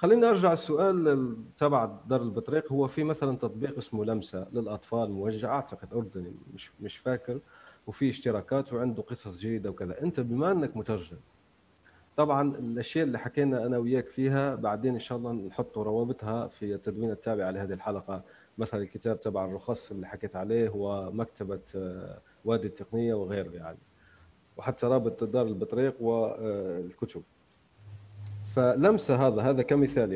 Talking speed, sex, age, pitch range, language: 135 wpm, male, 30-49, 105-140 Hz, Arabic